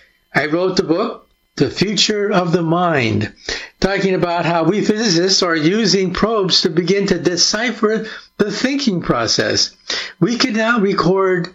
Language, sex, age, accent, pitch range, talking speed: English, male, 60-79, American, 155-200 Hz, 145 wpm